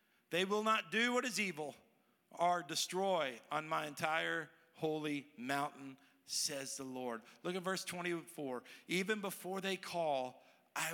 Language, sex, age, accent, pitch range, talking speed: English, male, 50-69, American, 165-230 Hz, 135 wpm